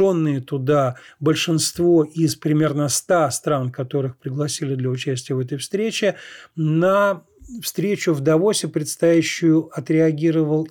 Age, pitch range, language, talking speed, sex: 40-59, 140-170 Hz, Russian, 105 wpm, male